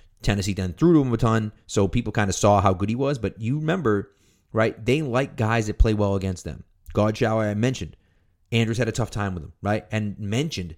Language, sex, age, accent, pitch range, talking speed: English, male, 30-49, American, 95-120 Hz, 230 wpm